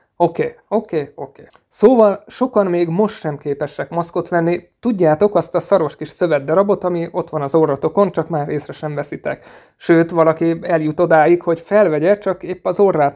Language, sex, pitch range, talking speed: Hungarian, male, 150-180 Hz, 180 wpm